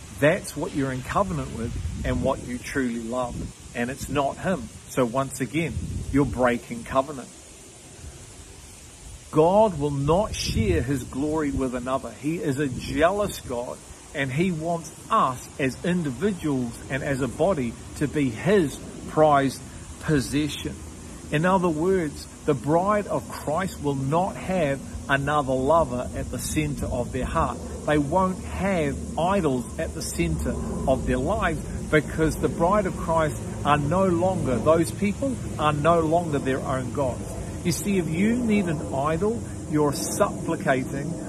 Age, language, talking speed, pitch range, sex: 50-69, English, 150 wpm, 130-165 Hz, male